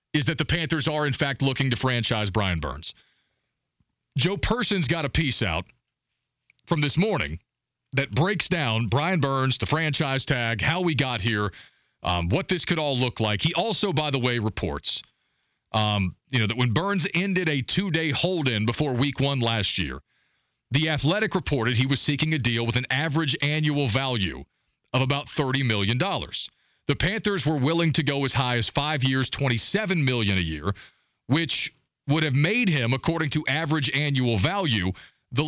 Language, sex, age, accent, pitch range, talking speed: English, male, 40-59, American, 115-155 Hz, 180 wpm